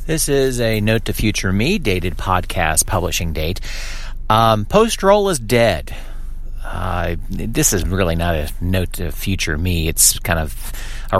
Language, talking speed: English, 155 wpm